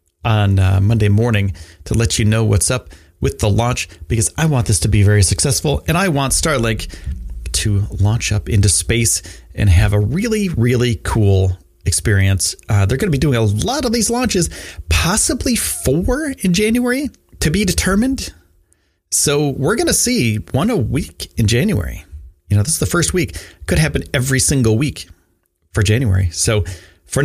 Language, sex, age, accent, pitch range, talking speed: English, male, 30-49, American, 90-125 Hz, 180 wpm